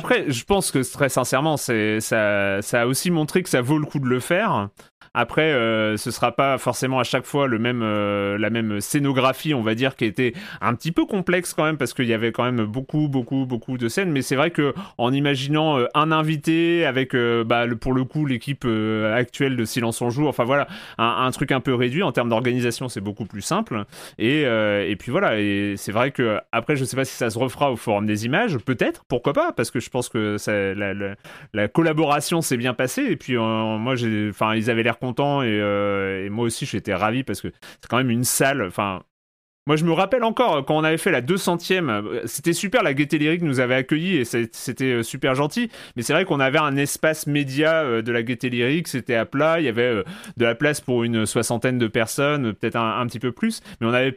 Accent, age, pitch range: French, 30-49, 115-150 Hz